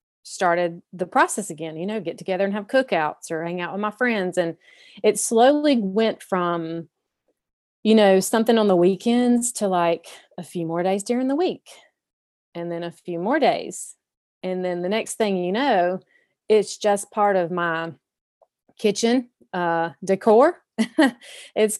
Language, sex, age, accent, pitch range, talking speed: English, female, 30-49, American, 170-220 Hz, 160 wpm